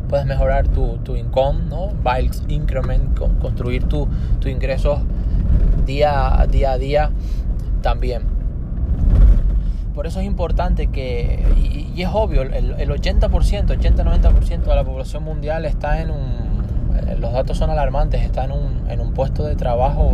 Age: 20-39